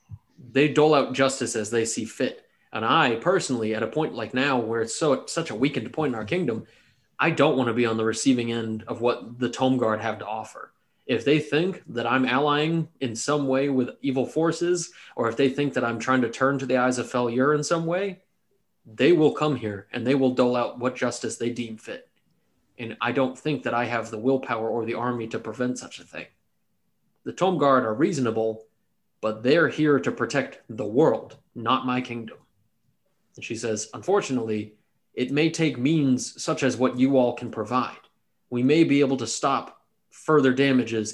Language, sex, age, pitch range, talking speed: English, male, 20-39, 115-140 Hz, 205 wpm